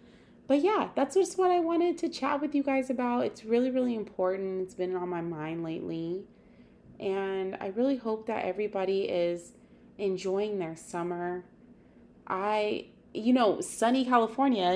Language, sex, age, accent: English, female, 20-39, American